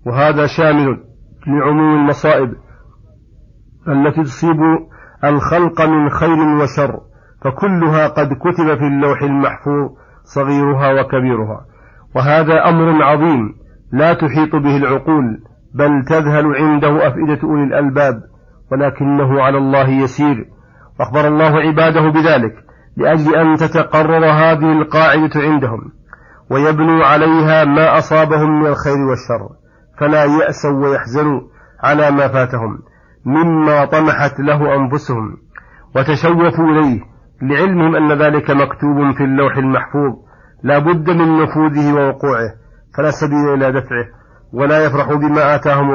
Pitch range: 135-155 Hz